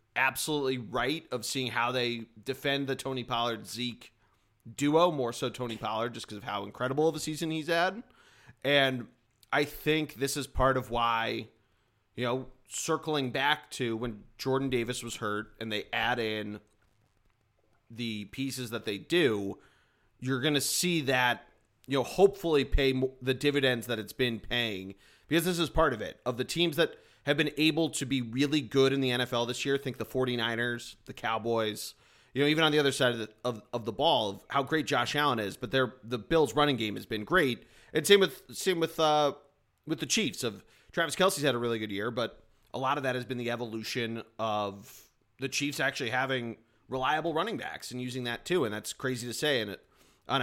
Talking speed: 200 wpm